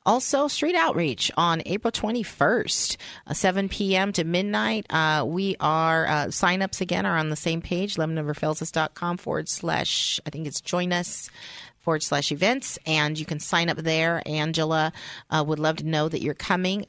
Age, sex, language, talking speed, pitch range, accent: 40-59, female, English, 165 wpm, 155-195 Hz, American